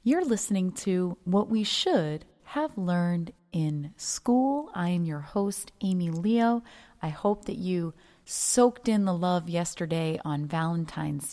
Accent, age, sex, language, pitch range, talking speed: American, 30-49, female, English, 160-205 Hz, 145 wpm